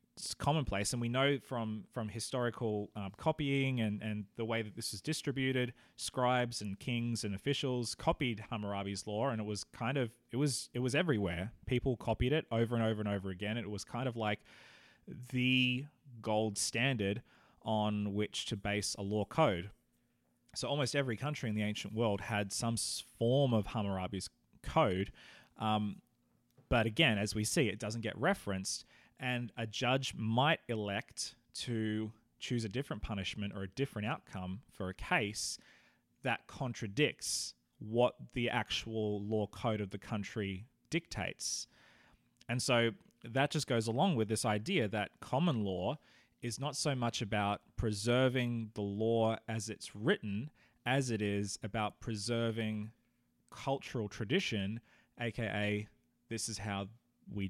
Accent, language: Australian, English